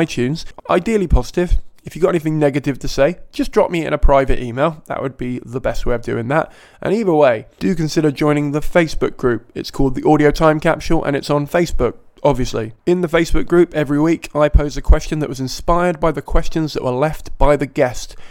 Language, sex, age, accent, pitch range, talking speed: English, male, 20-39, British, 135-160 Hz, 225 wpm